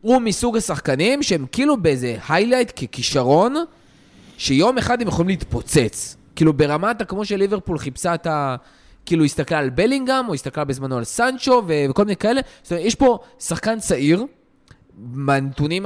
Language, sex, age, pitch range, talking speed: Hebrew, male, 20-39, 140-205 Hz, 150 wpm